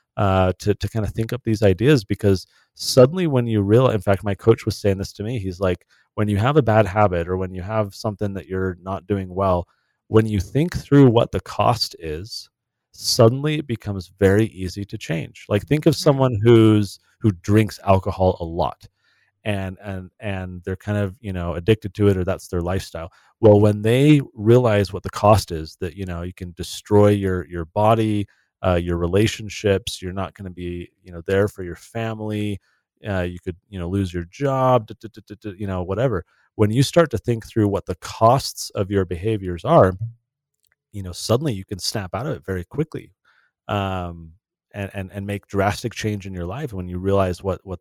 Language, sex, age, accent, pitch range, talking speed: English, male, 30-49, American, 95-110 Hz, 210 wpm